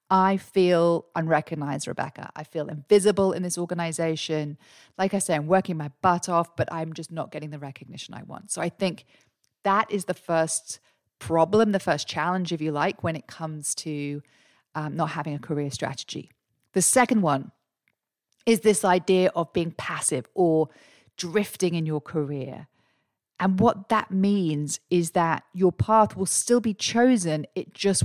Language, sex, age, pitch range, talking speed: English, female, 40-59, 155-190 Hz, 170 wpm